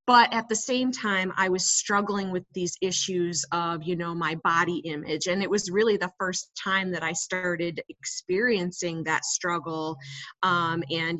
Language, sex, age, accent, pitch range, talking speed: English, female, 30-49, American, 175-230 Hz, 170 wpm